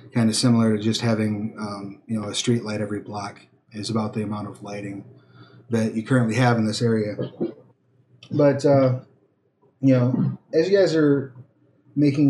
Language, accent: English, American